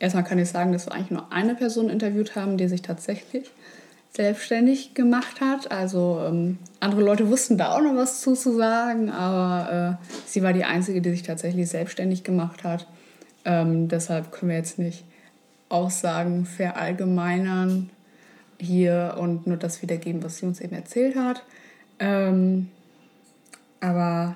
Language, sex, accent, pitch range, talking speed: German, female, German, 175-195 Hz, 155 wpm